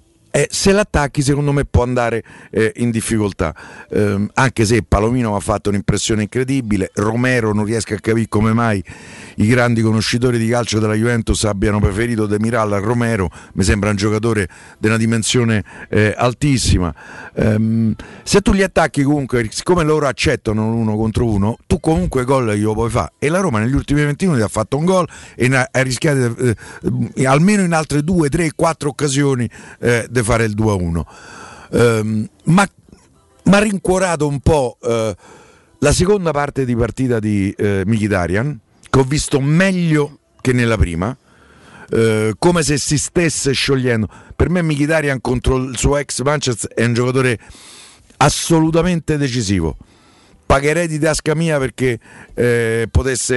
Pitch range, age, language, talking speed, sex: 110-140 Hz, 50-69, Italian, 160 wpm, male